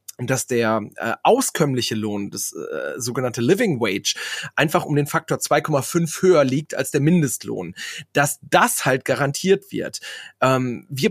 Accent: German